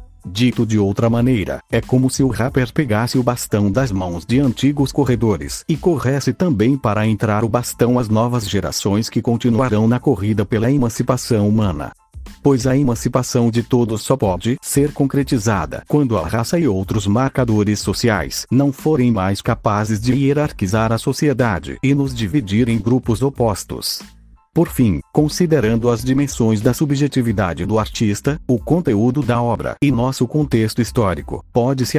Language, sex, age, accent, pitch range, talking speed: Portuguese, male, 40-59, Brazilian, 110-135 Hz, 155 wpm